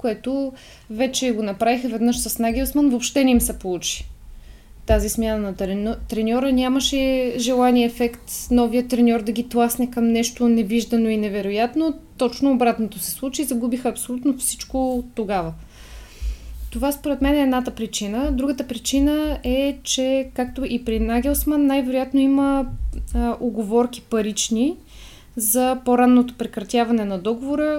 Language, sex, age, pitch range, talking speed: Bulgarian, female, 20-39, 220-265 Hz, 135 wpm